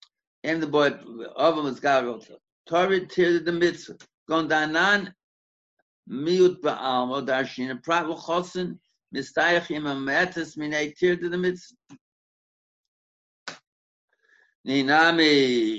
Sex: male